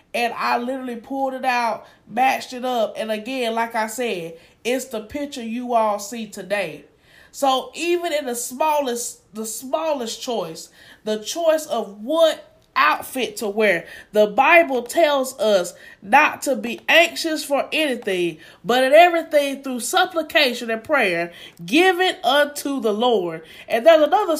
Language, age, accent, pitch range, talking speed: English, 20-39, American, 220-285 Hz, 150 wpm